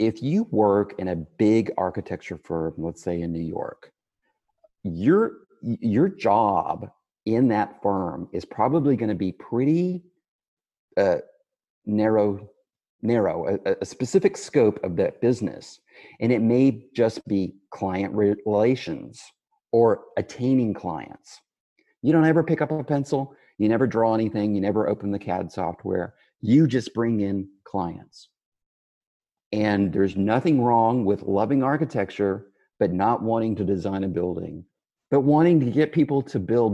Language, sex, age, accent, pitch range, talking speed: English, male, 40-59, American, 100-155 Hz, 140 wpm